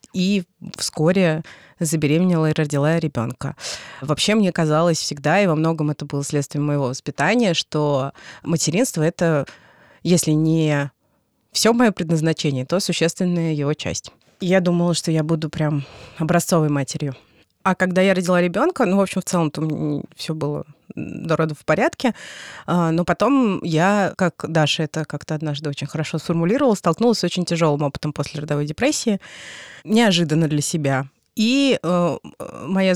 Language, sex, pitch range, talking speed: Russian, female, 150-185 Hz, 145 wpm